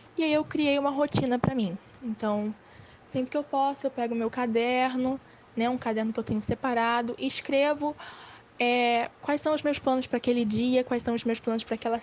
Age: 10-29